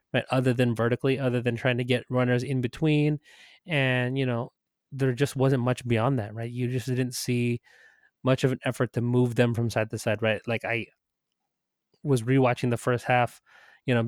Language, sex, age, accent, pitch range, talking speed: English, male, 20-39, American, 115-130 Hz, 200 wpm